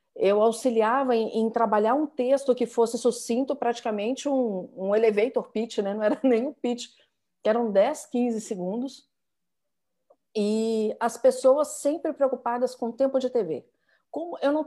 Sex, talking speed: female, 160 wpm